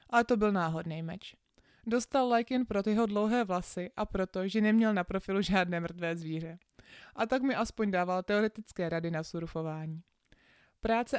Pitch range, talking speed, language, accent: 175-220 Hz, 165 wpm, Czech, native